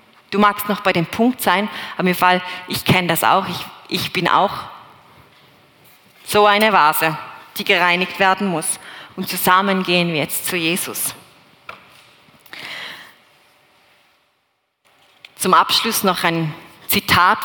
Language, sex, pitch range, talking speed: German, female, 165-205 Hz, 125 wpm